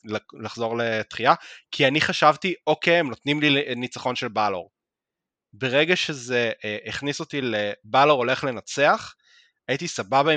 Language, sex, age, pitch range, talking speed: Hebrew, male, 20-39, 115-165 Hz, 125 wpm